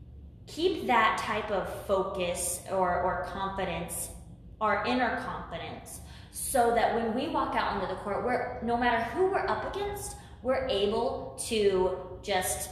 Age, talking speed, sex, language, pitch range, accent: 20-39, 145 wpm, female, English, 190-235 Hz, American